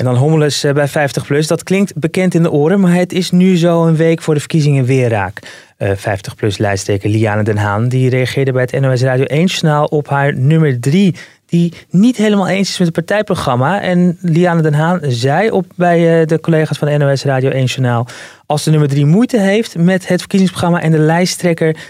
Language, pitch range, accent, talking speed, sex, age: Dutch, 130-175 Hz, Dutch, 200 wpm, male, 20-39